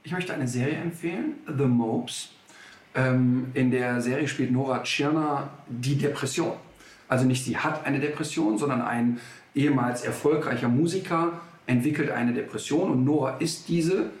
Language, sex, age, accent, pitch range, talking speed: German, male, 50-69, German, 125-150 Hz, 145 wpm